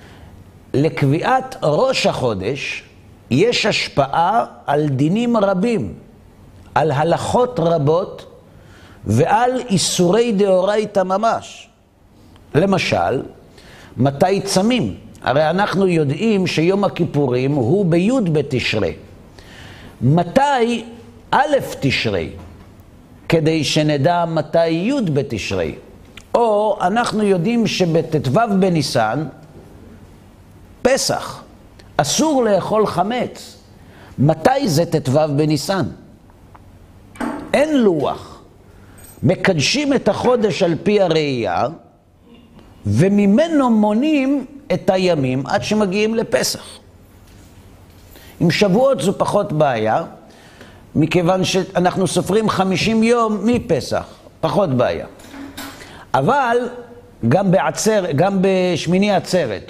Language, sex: Hebrew, male